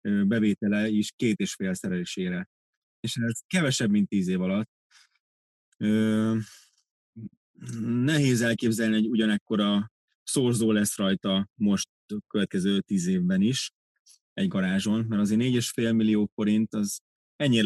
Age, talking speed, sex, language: 20-39, 125 wpm, male, Hungarian